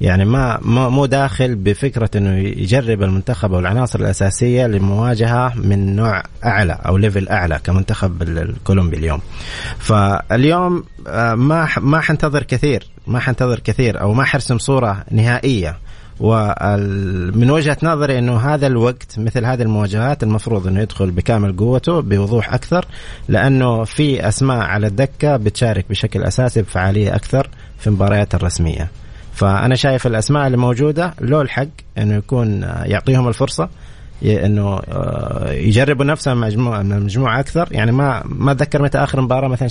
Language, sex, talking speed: Arabic, male, 135 wpm